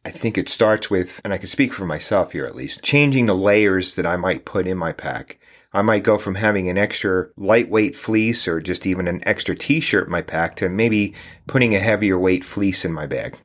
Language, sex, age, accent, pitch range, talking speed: English, male, 40-59, American, 95-110 Hz, 230 wpm